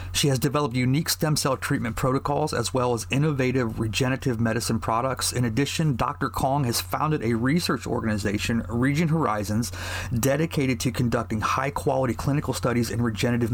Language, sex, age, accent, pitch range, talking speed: English, male, 30-49, American, 115-145 Hz, 150 wpm